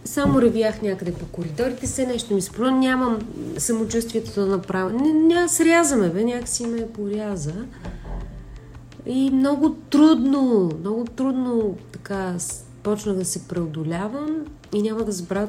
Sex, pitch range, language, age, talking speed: female, 170-245 Hz, Bulgarian, 30-49, 130 wpm